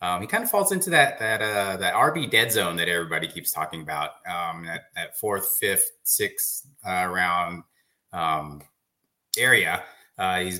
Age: 30-49